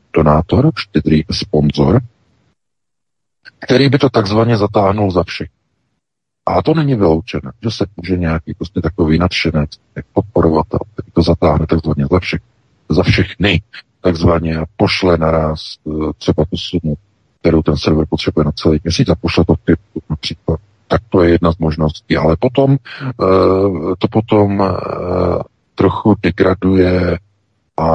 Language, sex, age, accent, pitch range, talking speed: Czech, male, 50-69, native, 80-95 Hz, 130 wpm